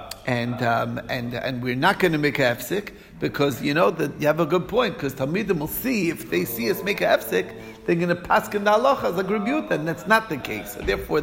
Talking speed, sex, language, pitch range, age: 235 wpm, male, English, 135-180 Hz, 50-69